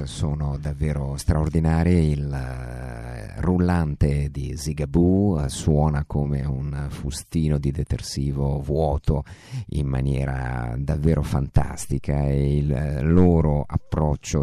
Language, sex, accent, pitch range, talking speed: Italian, male, native, 70-80 Hz, 90 wpm